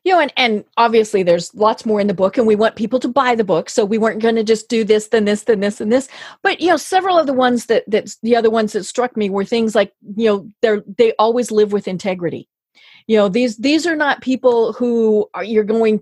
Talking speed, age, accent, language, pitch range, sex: 260 wpm, 40-59, American, English, 210-255 Hz, female